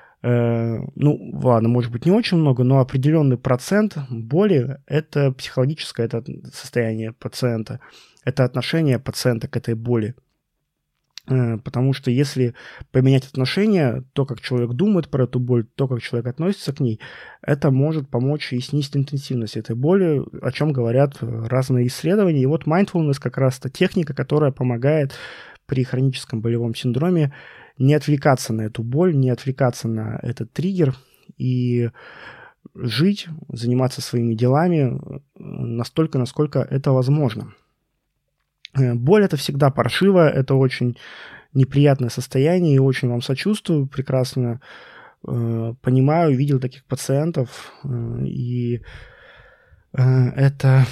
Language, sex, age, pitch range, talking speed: Russian, male, 20-39, 125-150 Hz, 125 wpm